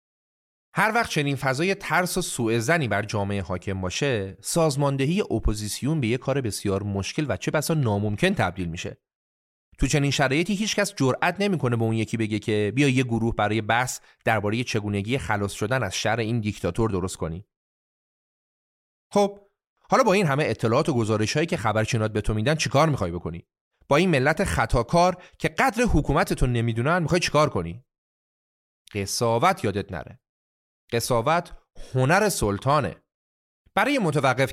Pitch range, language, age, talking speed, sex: 105-160 Hz, Persian, 30-49, 150 wpm, male